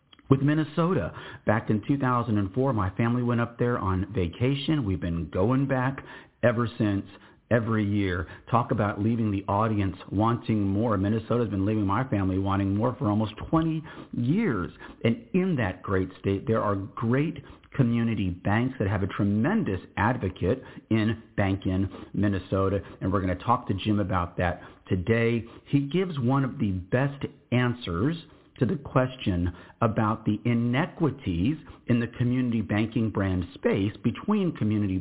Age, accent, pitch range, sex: 50-69, American, 100-135 Hz, male